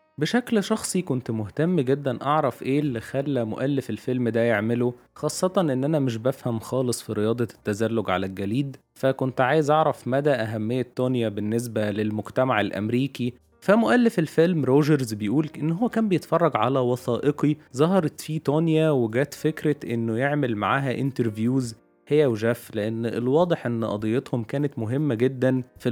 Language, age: Arabic, 20-39